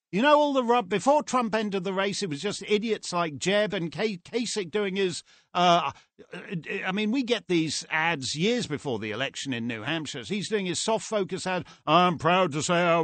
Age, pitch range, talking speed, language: 50-69, 170-240 Hz, 205 wpm, English